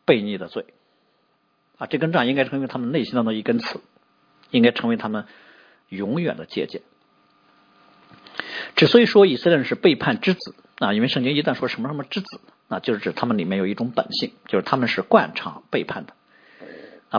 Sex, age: male, 50-69